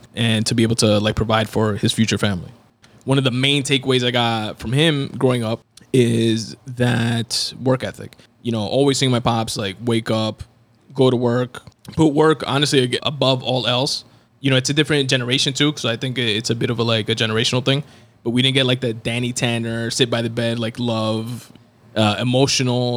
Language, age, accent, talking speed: English, 20-39, American, 205 wpm